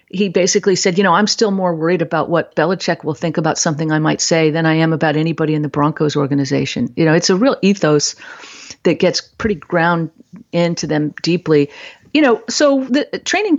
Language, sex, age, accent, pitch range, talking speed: English, female, 50-69, American, 160-195 Hz, 205 wpm